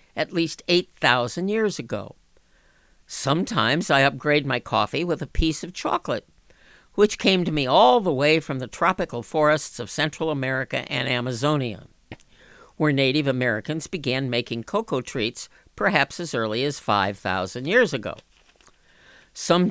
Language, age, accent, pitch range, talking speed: English, 50-69, American, 125-170 Hz, 140 wpm